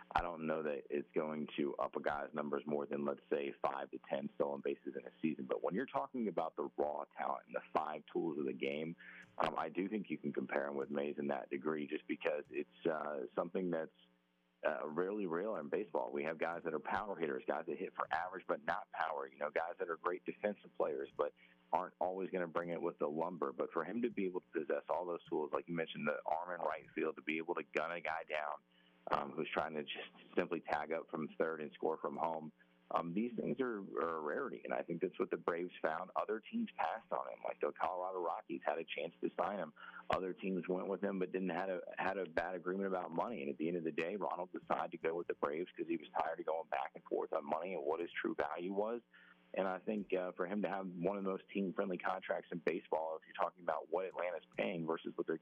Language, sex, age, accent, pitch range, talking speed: English, male, 40-59, American, 75-100 Hz, 255 wpm